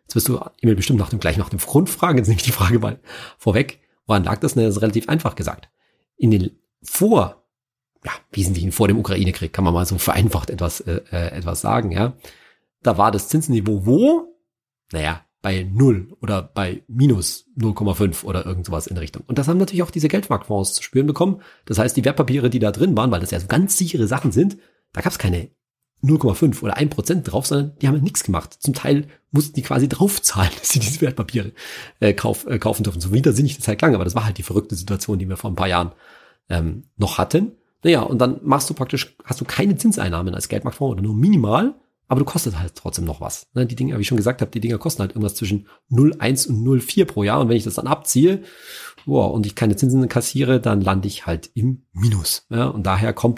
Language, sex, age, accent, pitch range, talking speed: German, male, 40-59, German, 100-140 Hz, 230 wpm